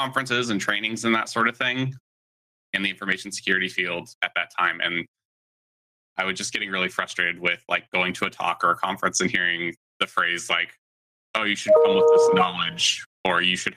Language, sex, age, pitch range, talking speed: English, male, 20-39, 90-110 Hz, 205 wpm